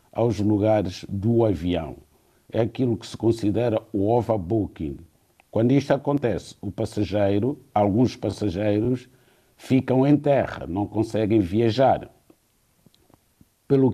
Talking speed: 110 wpm